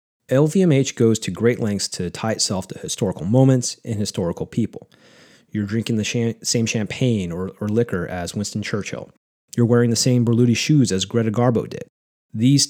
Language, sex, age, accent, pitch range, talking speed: English, male, 30-49, American, 105-135 Hz, 170 wpm